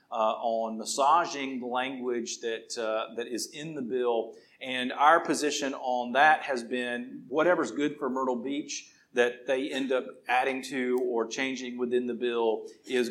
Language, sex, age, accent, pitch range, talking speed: English, male, 40-59, American, 115-130 Hz, 165 wpm